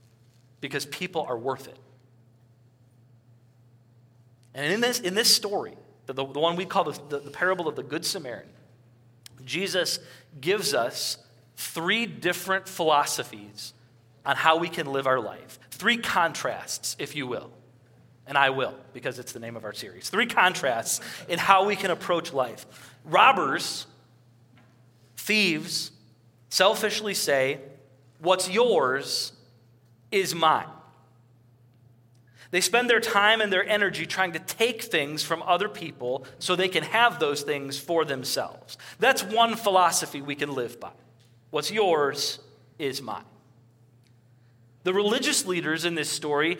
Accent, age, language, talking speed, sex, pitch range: American, 40-59, English, 140 wpm, male, 120-180 Hz